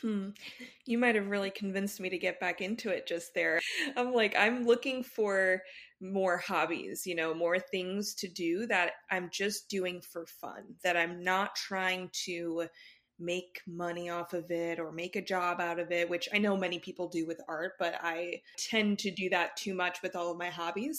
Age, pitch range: 20-39, 170-200 Hz